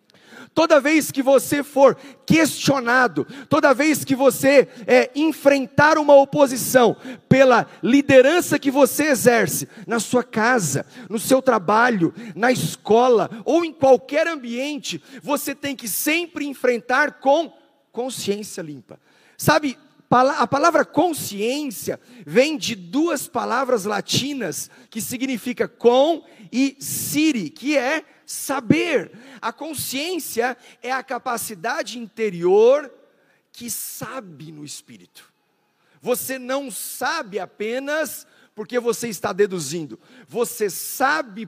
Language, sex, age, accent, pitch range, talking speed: Portuguese, male, 40-59, Brazilian, 225-285 Hz, 110 wpm